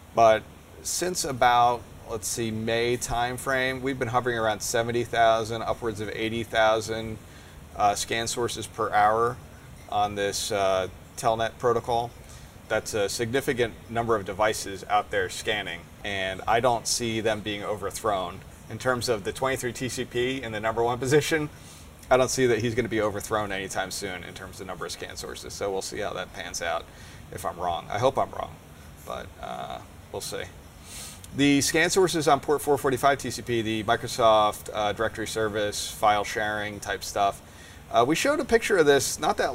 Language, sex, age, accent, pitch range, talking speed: English, male, 30-49, American, 100-125 Hz, 170 wpm